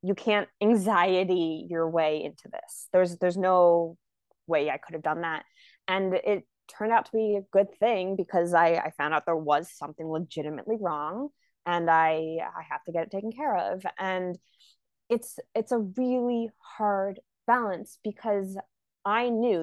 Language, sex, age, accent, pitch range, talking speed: English, female, 20-39, American, 170-210 Hz, 170 wpm